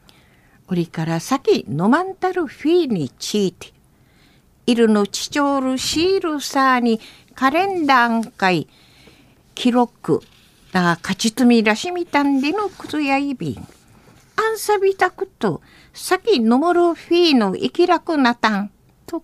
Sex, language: female, Japanese